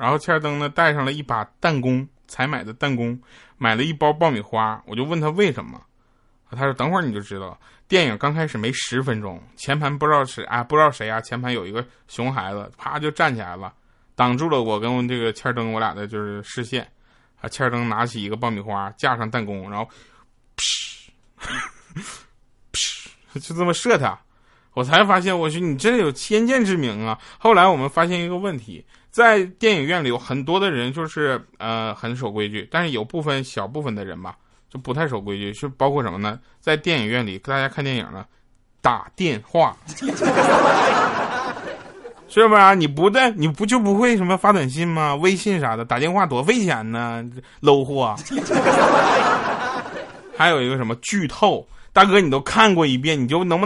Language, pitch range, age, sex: Chinese, 115-170 Hz, 20-39, male